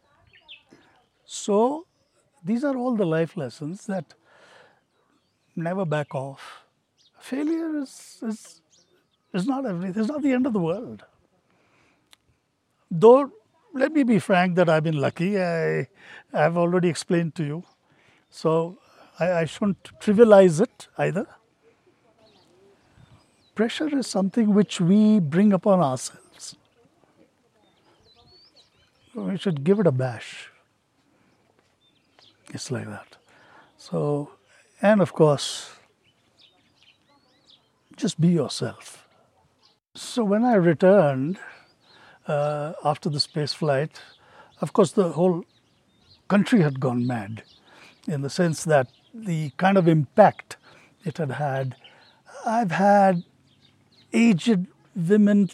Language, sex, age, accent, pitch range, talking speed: English, male, 60-79, Indian, 150-210 Hz, 110 wpm